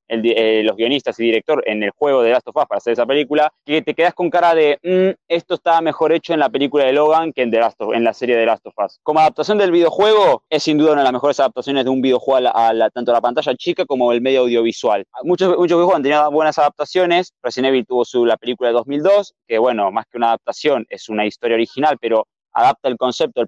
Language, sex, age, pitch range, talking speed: Spanish, male, 20-39, 125-160 Hz, 260 wpm